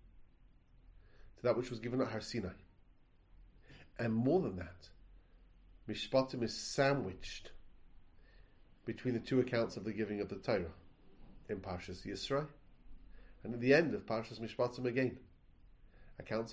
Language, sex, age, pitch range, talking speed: English, male, 30-49, 90-125 Hz, 125 wpm